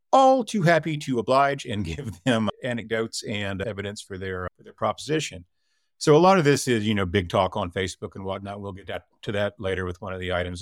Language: English